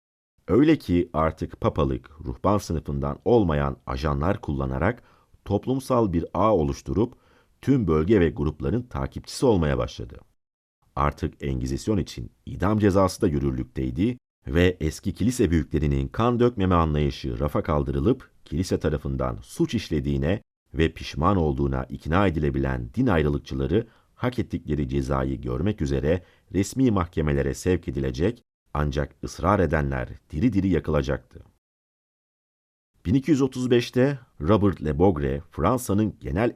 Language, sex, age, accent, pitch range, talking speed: Turkish, male, 50-69, native, 70-95 Hz, 110 wpm